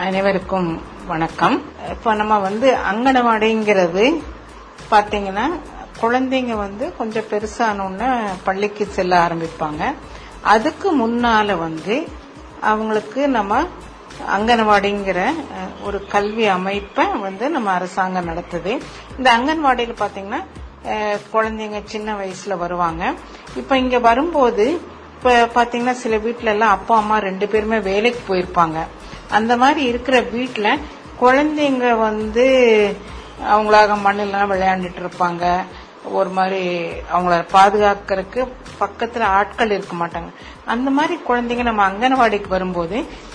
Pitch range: 190-240 Hz